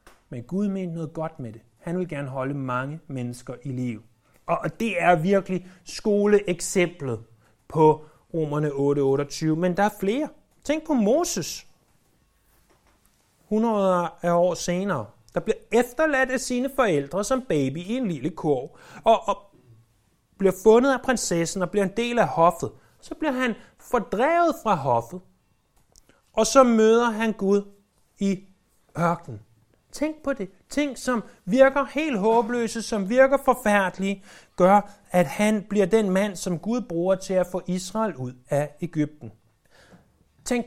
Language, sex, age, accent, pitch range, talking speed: Danish, male, 30-49, native, 150-220 Hz, 145 wpm